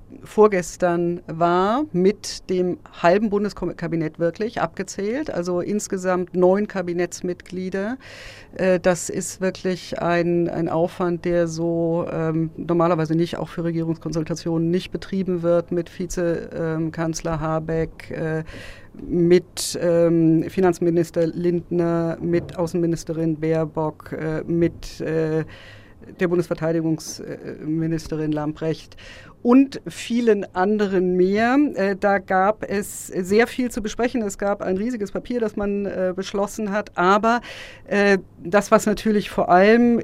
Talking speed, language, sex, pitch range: 100 wpm, German, female, 165-200 Hz